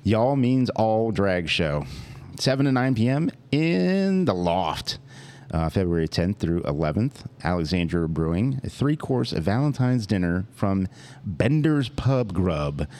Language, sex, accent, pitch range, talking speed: English, male, American, 85-120 Hz, 125 wpm